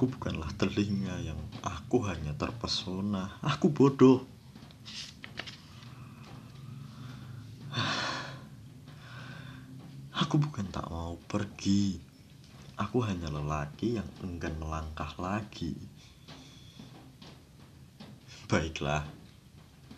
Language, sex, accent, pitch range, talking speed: Indonesian, male, native, 80-105 Hz, 65 wpm